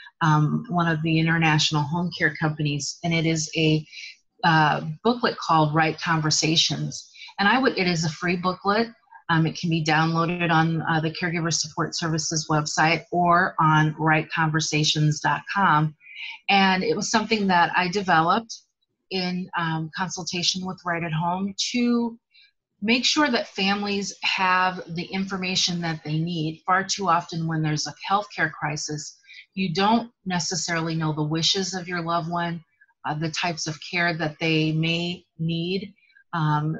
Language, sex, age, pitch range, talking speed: English, female, 30-49, 160-195 Hz, 155 wpm